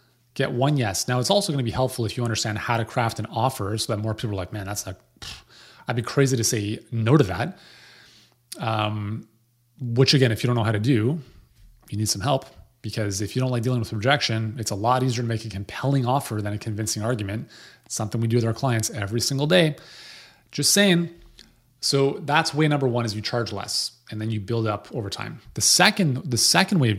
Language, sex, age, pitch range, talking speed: English, male, 30-49, 110-140 Hz, 230 wpm